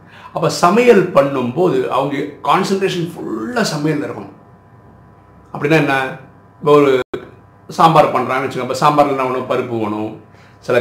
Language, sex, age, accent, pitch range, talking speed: Tamil, male, 50-69, native, 115-160 Hz, 100 wpm